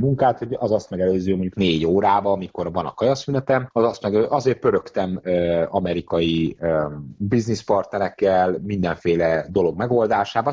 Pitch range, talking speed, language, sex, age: 90-115 Hz, 125 wpm, Hungarian, male, 30-49